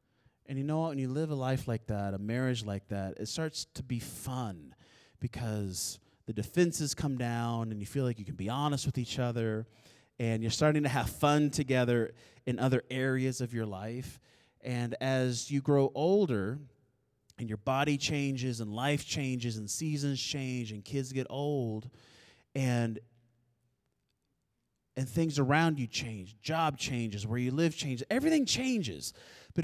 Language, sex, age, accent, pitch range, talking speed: English, male, 30-49, American, 115-150 Hz, 170 wpm